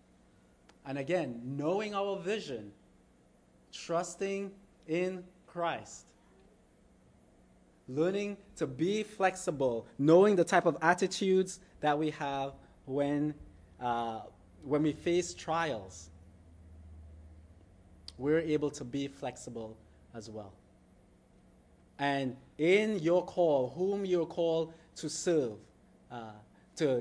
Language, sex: English, male